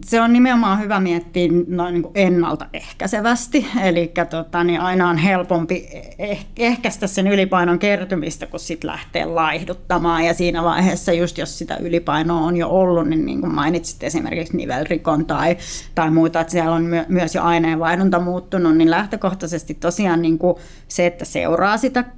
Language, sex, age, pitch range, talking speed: Finnish, female, 30-49, 170-195 Hz, 140 wpm